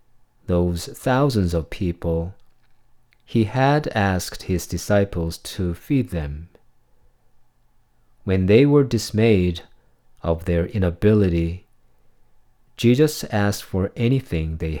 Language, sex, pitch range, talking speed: English, male, 85-125 Hz, 95 wpm